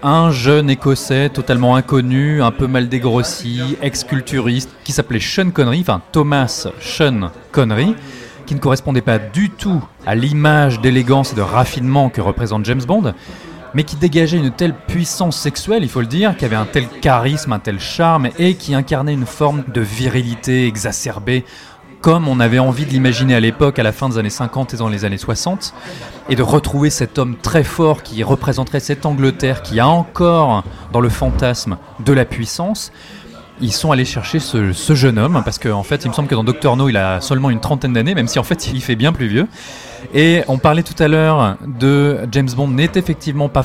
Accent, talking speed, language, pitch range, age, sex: French, 200 wpm, French, 120-150 Hz, 30-49, male